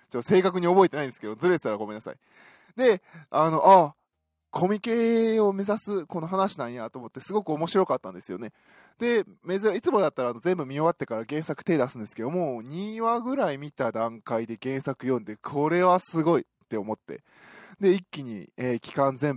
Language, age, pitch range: Japanese, 20-39, 125-190 Hz